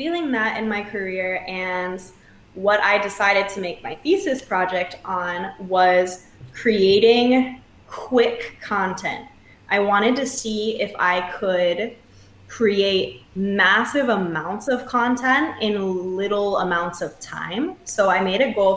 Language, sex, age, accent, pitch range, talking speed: English, female, 20-39, American, 180-225 Hz, 130 wpm